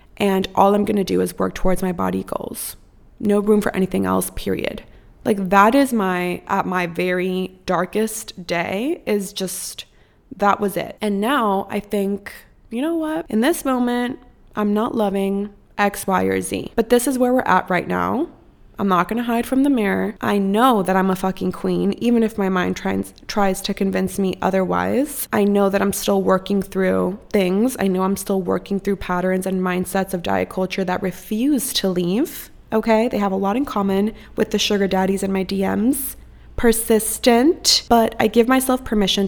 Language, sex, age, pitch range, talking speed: English, female, 20-39, 185-220 Hz, 190 wpm